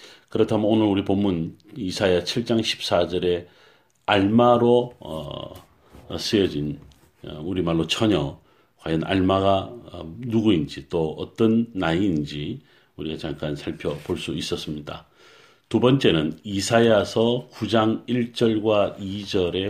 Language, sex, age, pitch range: Korean, male, 40-59, 85-120 Hz